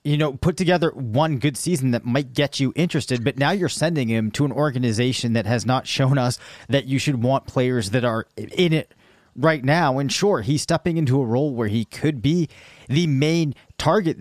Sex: male